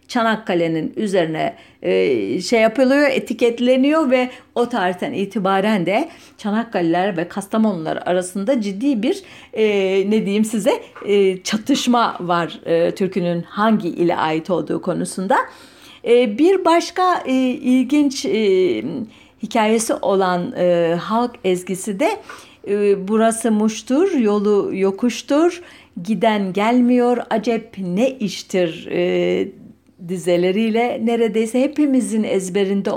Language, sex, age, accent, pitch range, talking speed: German, female, 50-69, Turkish, 195-260 Hz, 90 wpm